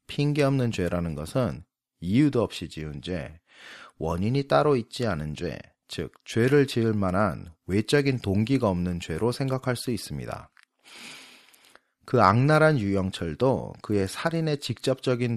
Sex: male